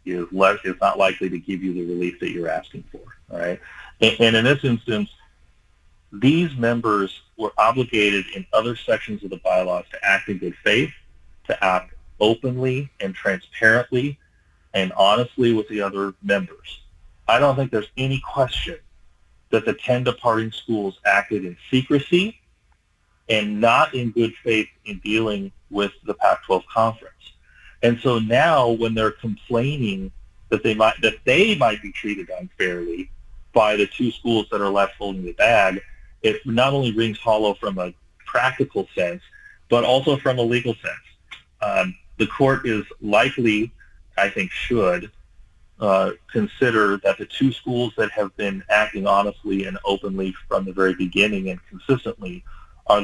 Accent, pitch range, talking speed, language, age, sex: American, 95-120 Hz, 155 wpm, English, 40-59, male